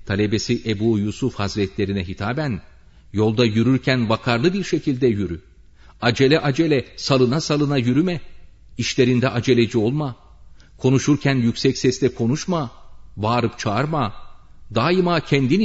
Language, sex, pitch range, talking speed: Turkish, male, 90-145 Hz, 105 wpm